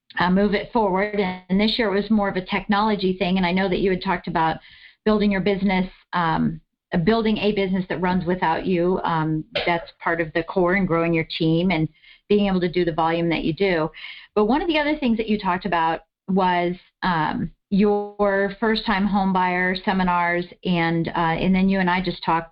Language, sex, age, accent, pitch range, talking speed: English, female, 40-59, American, 175-210 Hz, 210 wpm